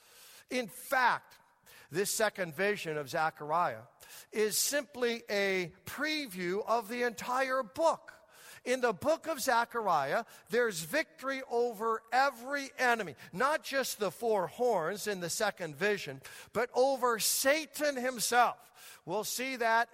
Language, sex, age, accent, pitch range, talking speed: English, male, 50-69, American, 190-250 Hz, 125 wpm